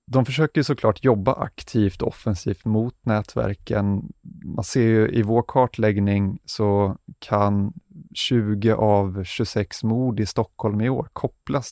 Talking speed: 130 wpm